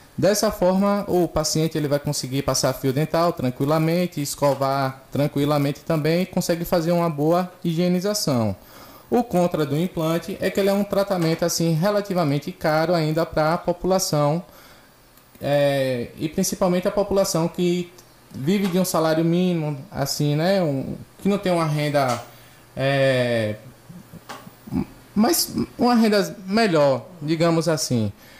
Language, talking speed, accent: Portuguese, 135 wpm, Brazilian